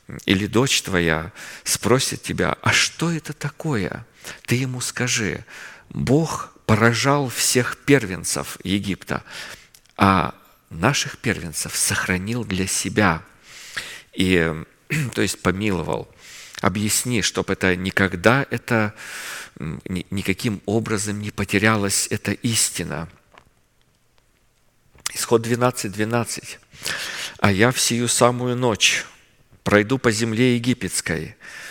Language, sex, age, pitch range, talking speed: Russian, male, 50-69, 95-120 Hz, 95 wpm